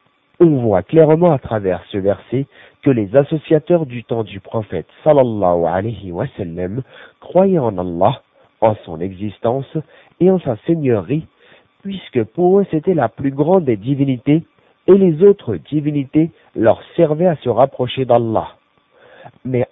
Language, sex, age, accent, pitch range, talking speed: French, male, 50-69, French, 105-155 Hz, 145 wpm